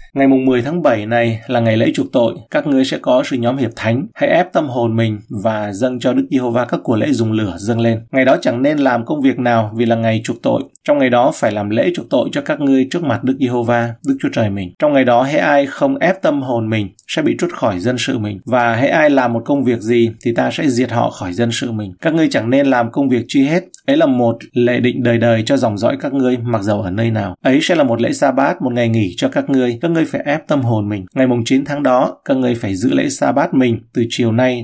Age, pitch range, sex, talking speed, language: 20-39, 115-135 Hz, male, 280 wpm, Vietnamese